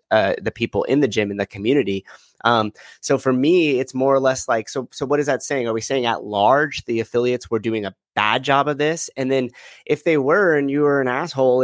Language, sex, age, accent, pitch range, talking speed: English, male, 30-49, American, 115-135 Hz, 250 wpm